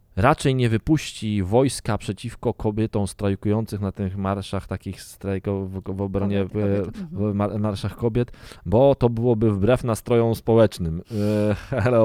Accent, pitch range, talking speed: native, 95-120 Hz, 135 wpm